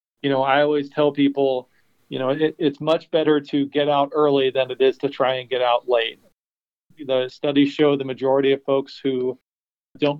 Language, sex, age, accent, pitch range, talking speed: English, male, 40-59, American, 125-140 Hz, 195 wpm